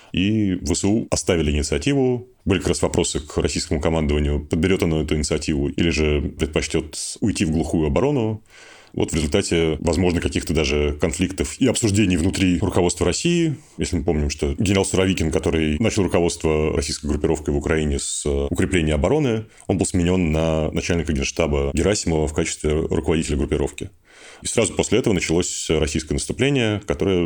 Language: Russian